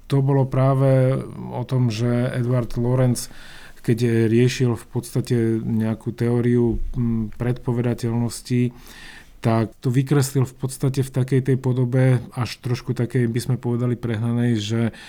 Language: Slovak